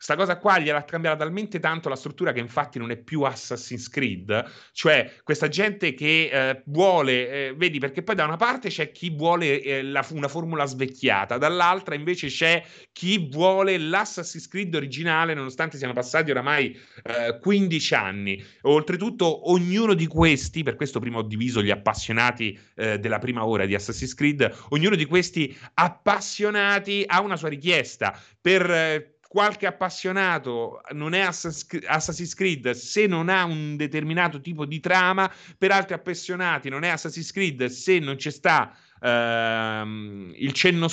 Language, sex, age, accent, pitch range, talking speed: Italian, male, 30-49, native, 125-180 Hz, 160 wpm